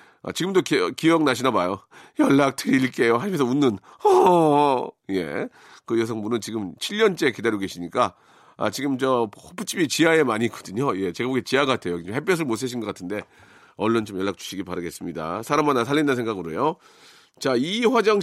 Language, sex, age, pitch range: Korean, male, 40-59, 120-175 Hz